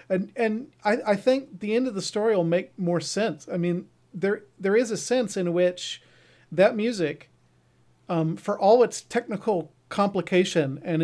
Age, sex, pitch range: 40-59, male, 145-195 Hz